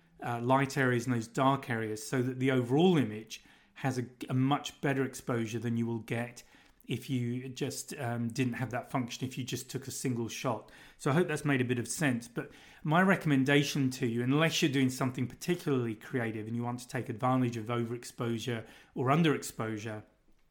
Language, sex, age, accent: English, male, 30-49, British